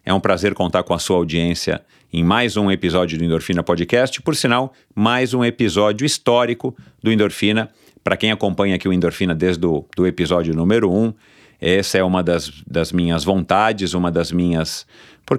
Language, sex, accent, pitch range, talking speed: Portuguese, male, Brazilian, 85-110 Hz, 180 wpm